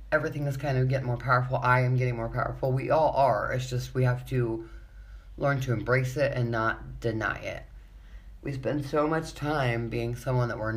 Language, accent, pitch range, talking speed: English, American, 110-130 Hz, 205 wpm